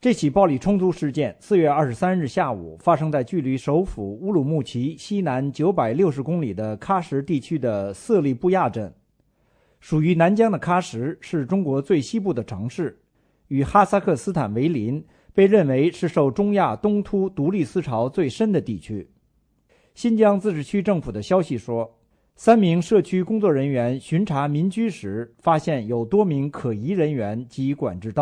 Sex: male